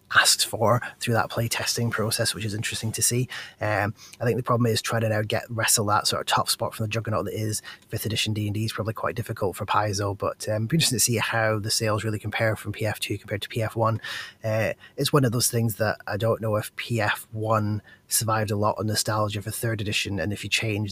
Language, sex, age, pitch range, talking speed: English, male, 20-39, 105-115 Hz, 240 wpm